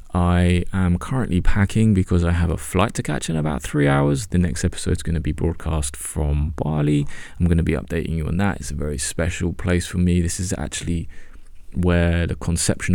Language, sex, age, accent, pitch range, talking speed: English, male, 20-39, British, 75-90 Hz, 215 wpm